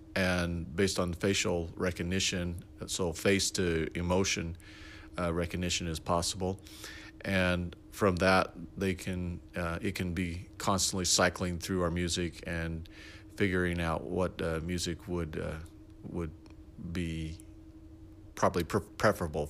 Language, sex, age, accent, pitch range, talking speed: English, male, 40-59, American, 85-100 Hz, 125 wpm